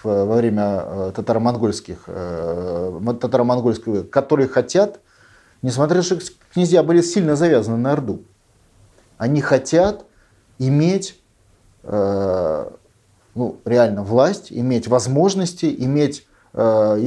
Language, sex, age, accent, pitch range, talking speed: Russian, male, 30-49, native, 115-160 Hz, 90 wpm